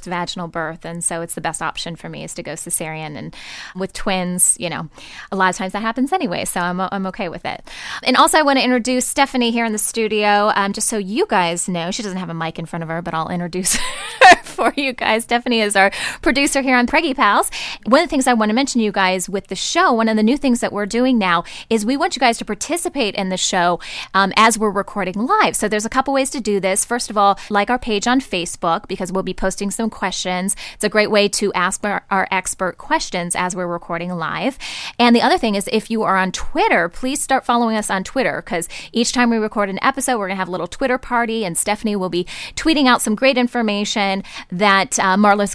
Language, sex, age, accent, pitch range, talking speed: English, female, 10-29, American, 185-245 Hz, 250 wpm